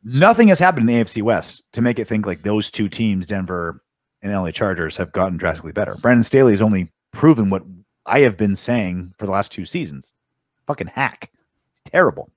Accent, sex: American, male